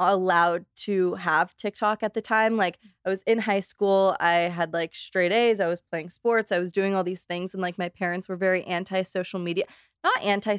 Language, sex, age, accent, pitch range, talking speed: English, female, 20-39, American, 175-205 Hz, 220 wpm